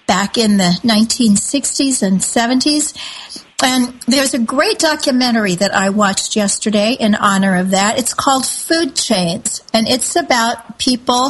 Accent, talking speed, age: American, 145 wpm, 50-69